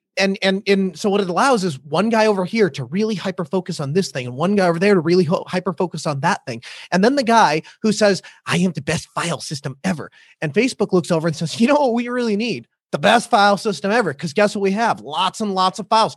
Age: 30-49